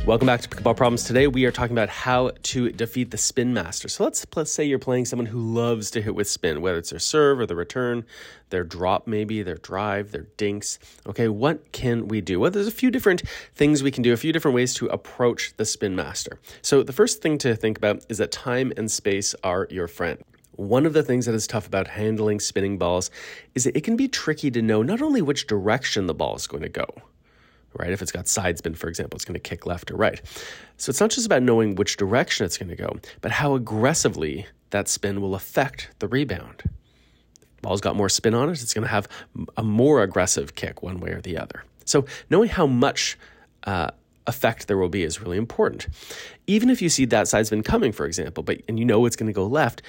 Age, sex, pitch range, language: 30-49, male, 100-135 Hz, English